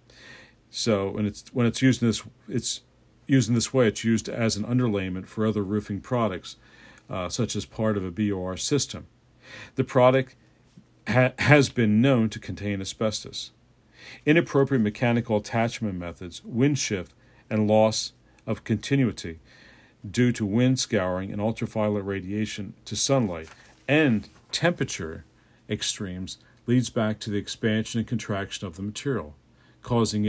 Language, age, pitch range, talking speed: English, 50-69, 105-125 Hz, 145 wpm